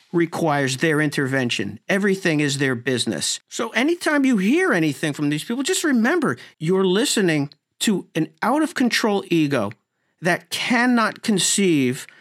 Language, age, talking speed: English, 50-69, 130 wpm